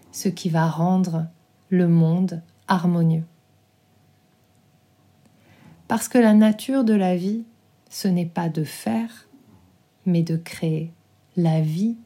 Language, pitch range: French, 160-195 Hz